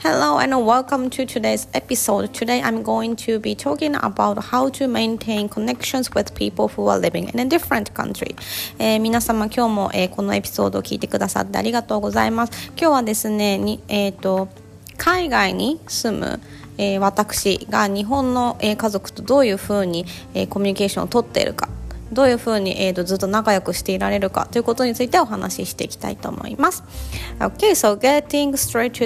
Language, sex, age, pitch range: Japanese, female, 20-39, 195-260 Hz